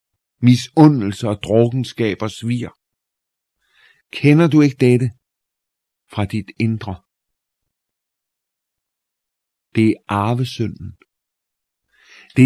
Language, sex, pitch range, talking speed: Danish, male, 100-130 Hz, 70 wpm